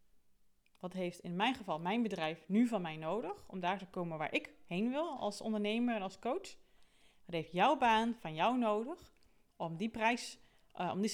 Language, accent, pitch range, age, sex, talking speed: Dutch, Dutch, 185-245 Hz, 30-49, female, 200 wpm